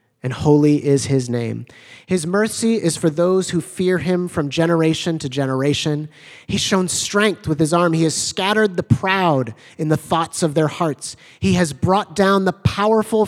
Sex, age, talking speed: male, 30-49, 180 wpm